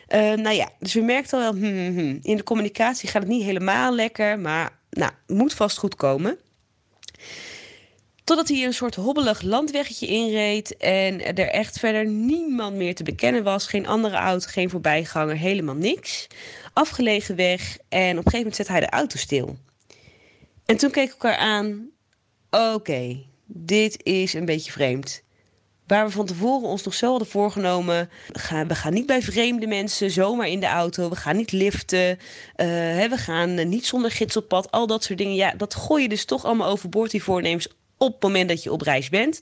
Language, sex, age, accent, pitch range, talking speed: Dutch, female, 20-39, Dutch, 180-230 Hz, 190 wpm